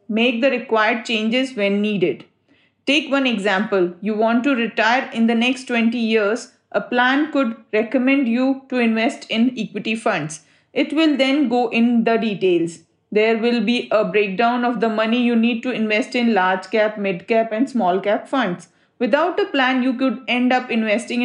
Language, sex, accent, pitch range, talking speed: English, female, Indian, 215-265 Hz, 180 wpm